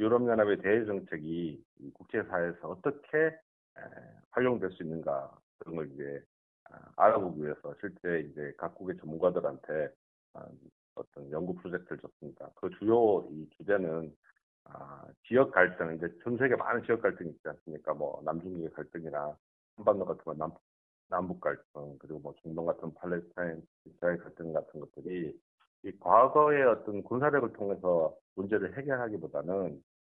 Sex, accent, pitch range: male, native, 75-110 Hz